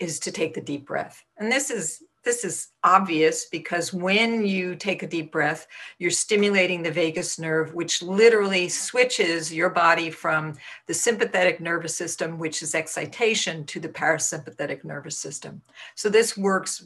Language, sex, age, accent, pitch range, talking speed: English, female, 50-69, American, 170-245 Hz, 160 wpm